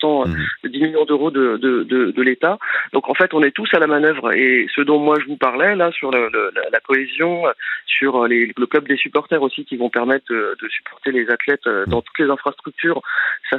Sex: male